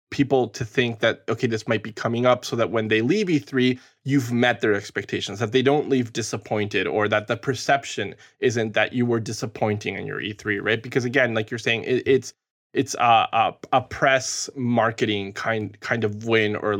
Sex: male